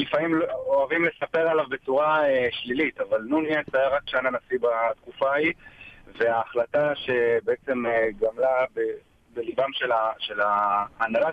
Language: Hebrew